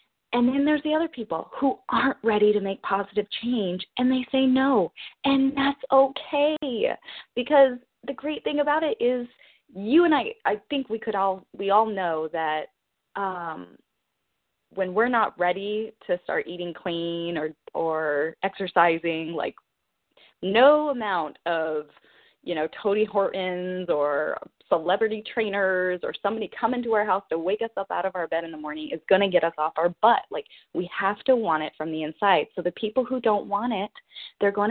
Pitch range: 180-245 Hz